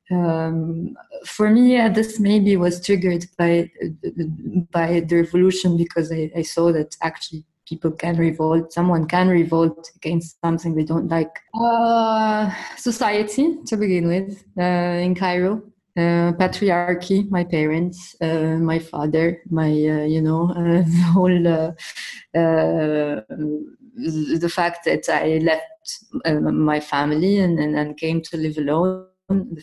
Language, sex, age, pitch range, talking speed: English, female, 20-39, 155-180 Hz, 140 wpm